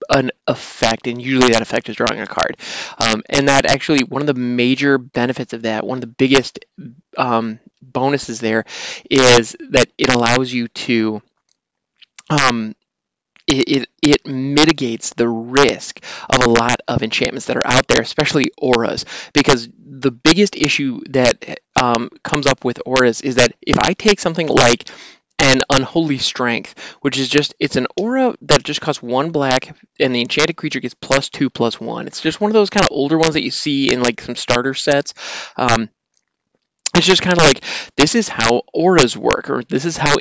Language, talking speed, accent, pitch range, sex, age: English, 185 wpm, American, 120-150 Hz, male, 20-39